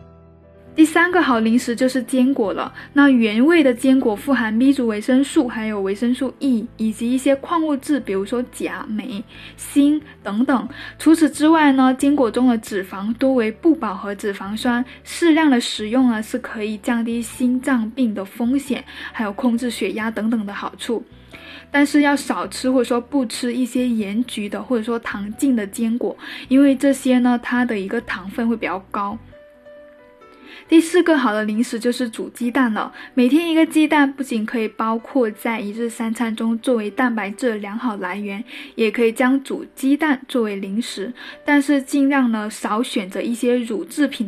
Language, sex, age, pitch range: Chinese, female, 10-29, 220-275 Hz